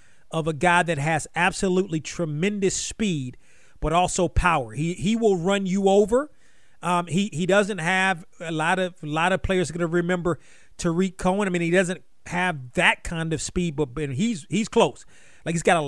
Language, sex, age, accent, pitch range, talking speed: English, male, 40-59, American, 160-190 Hz, 195 wpm